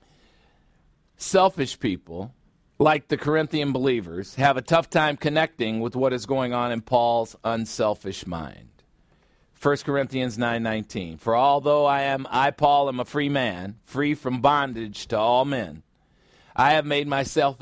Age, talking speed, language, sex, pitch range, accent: 50-69, 145 wpm, English, male, 115-150 Hz, American